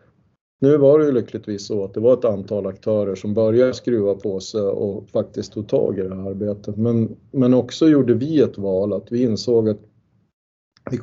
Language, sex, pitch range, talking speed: Swedish, male, 105-120 Hz, 200 wpm